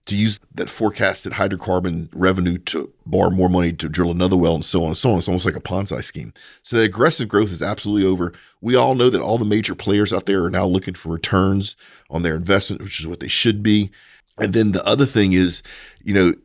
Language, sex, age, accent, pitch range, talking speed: English, male, 40-59, American, 90-110 Hz, 235 wpm